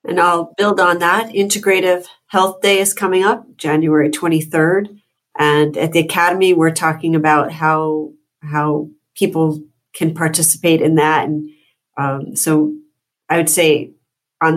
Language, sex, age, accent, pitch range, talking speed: English, female, 40-59, American, 150-170 Hz, 140 wpm